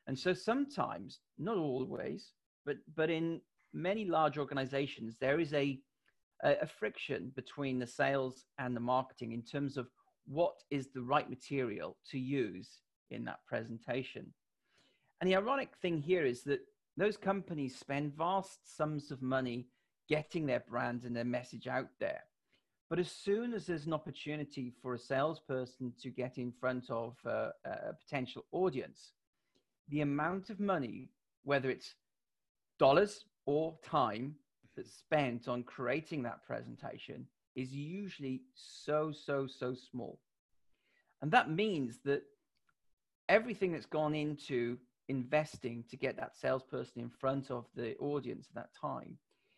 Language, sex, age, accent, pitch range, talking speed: English, male, 40-59, British, 125-160 Hz, 145 wpm